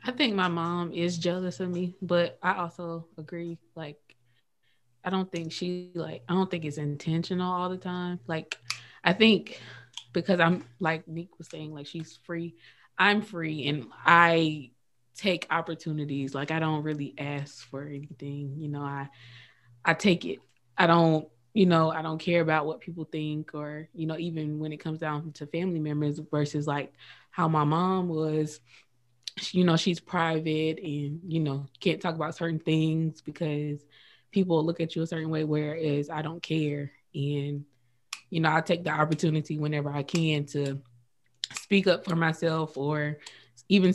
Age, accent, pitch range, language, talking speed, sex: 20-39, American, 150-170 Hz, English, 170 wpm, female